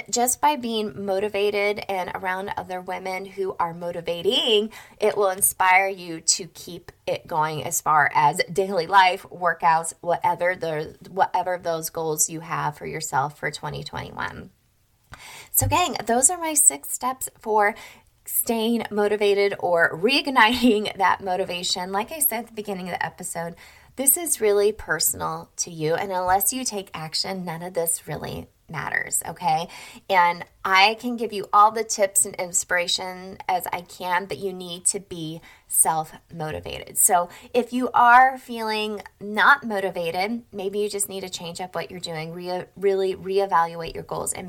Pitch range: 170-210 Hz